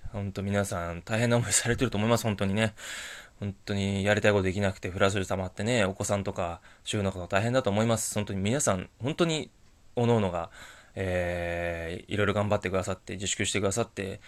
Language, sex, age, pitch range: Japanese, male, 20-39, 95-110 Hz